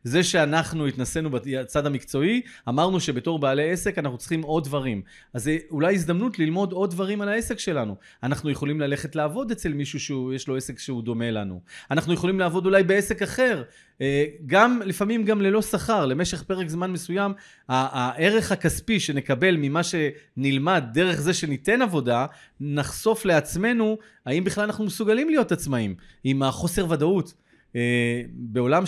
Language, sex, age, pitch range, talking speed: Hebrew, male, 30-49, 135-190 Hz, 150 wpm